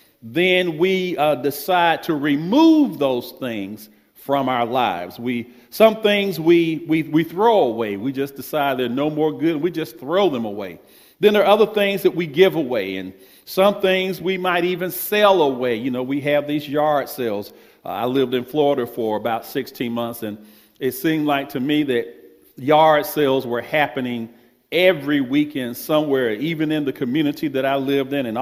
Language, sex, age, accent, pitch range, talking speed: English, male, 50-69, American, 130-185 Hz, 185 wpm